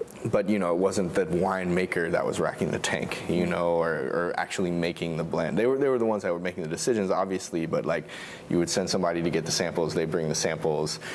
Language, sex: English, male